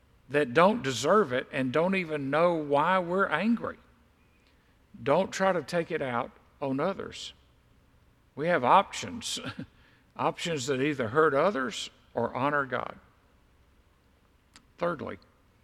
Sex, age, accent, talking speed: male, 50-69, American, 120 wpm